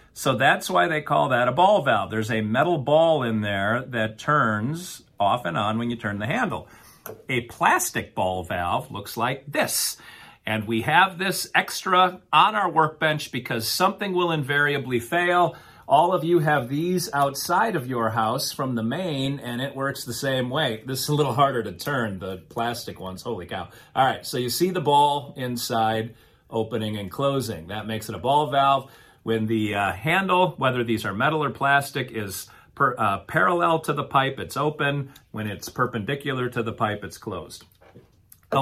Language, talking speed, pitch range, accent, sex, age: English, 185 wpm, 110-150 Hz, American, male, 40-59